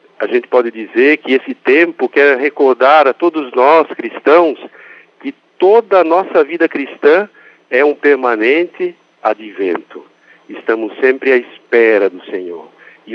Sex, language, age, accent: male, Portuguese, 50-69, Brazilian